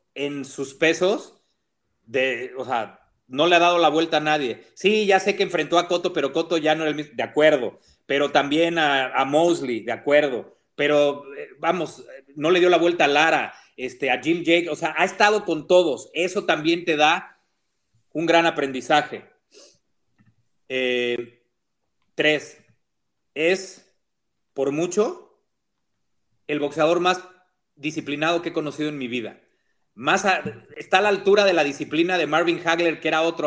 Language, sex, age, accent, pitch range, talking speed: Spanish, male, 40-59, Mexican, 140-180 Hz, 165 wpm